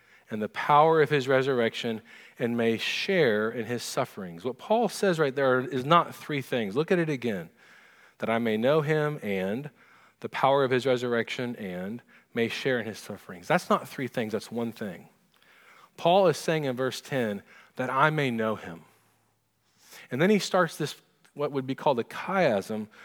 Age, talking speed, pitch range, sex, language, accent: 40-59, 185 wpm, 130-185 Hz, male, English, American